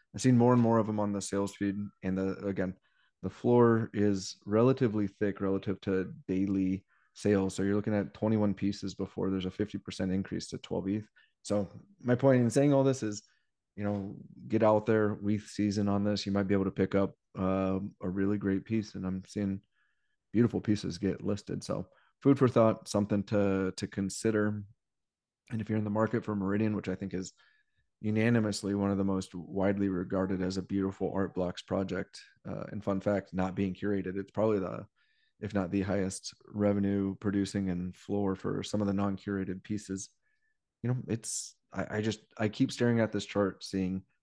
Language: English